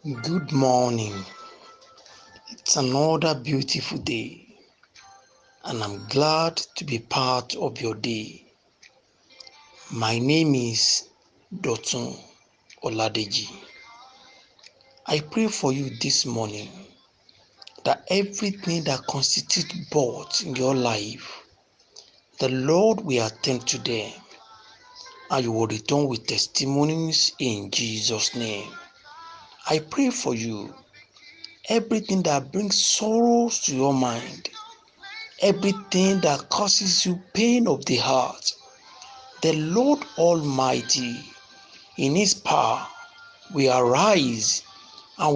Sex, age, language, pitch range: male, 60-79, English, 130-215 Hz